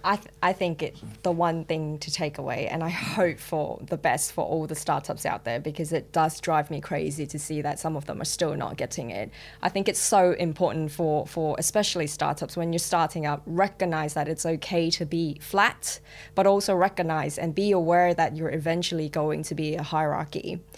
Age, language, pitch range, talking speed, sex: 10-29, English, 160-200 Hz, 215 wpm, female